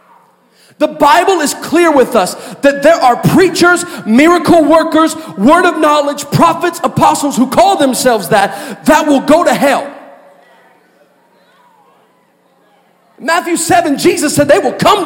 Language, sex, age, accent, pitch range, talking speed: English, male, 40-59, American, 270-330 Hz, 130 wpm